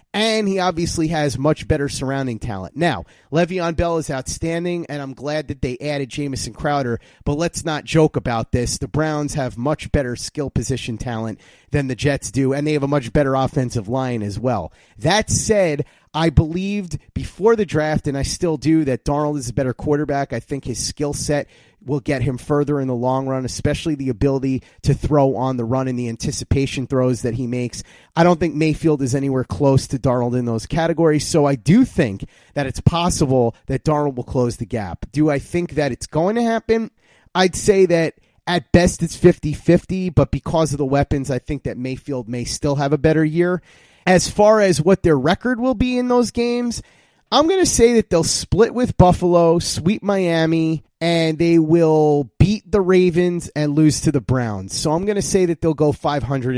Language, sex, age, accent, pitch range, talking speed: English, male, 30-49, American, 130-170 Hz, 205 wpm